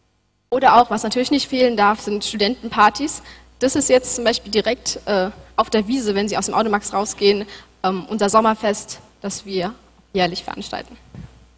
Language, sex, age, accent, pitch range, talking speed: German, female, 10-29, German, 200-260 Hz, 165 wpm